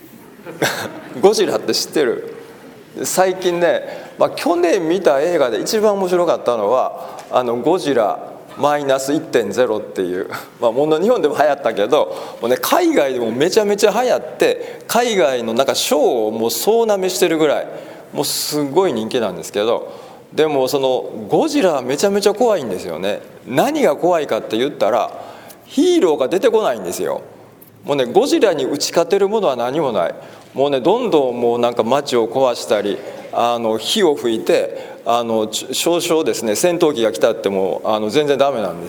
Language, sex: Japanese, male